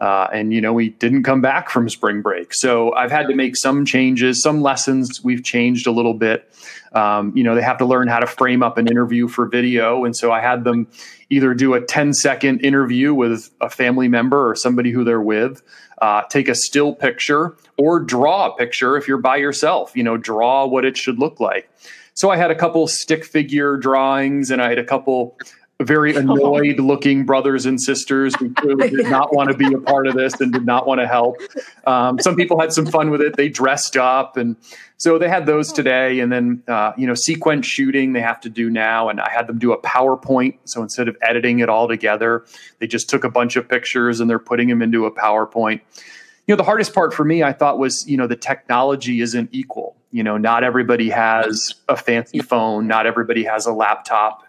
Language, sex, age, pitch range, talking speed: English, male, 30-49, 115-140 Hz, 220 wpm